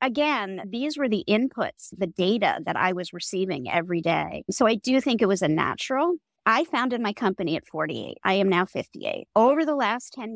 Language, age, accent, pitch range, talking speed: English, 40-59, American, 180-245 Hz, 205 wpm